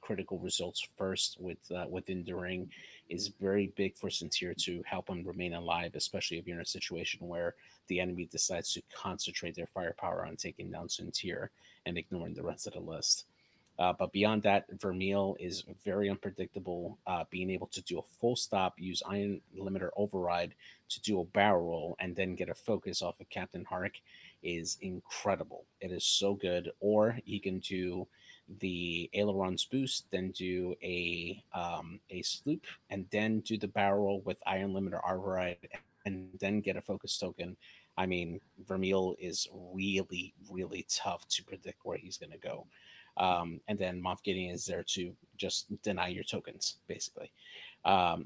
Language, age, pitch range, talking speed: English, 30-49, 90-100 Hz, 170 wpm